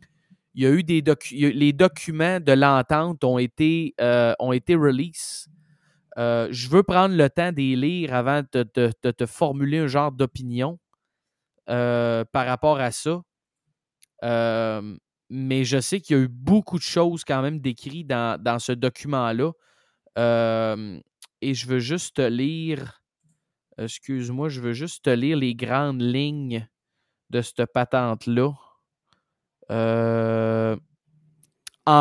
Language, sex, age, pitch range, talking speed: French, male, 20-39, 125-155 Hz, 145 wpm